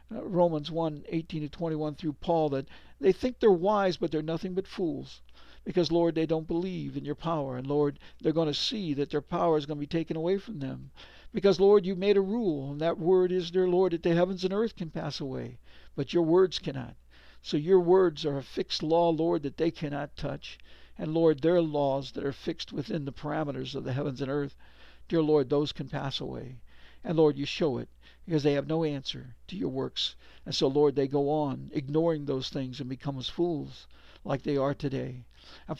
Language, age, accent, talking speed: English, 60-79, American, 220 wpm